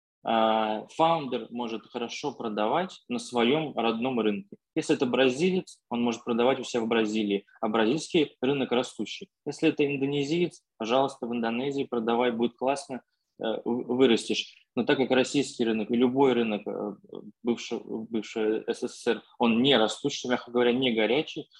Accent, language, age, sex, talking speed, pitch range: native, Russian, 20-39, male, 140 wpm, 115-135 Hz